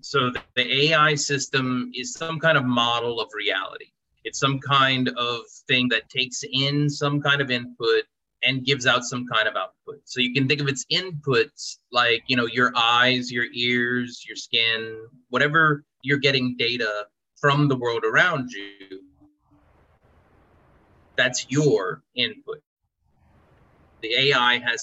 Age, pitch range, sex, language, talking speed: 30-49, 120-145 Hz, male, English, 145 wpm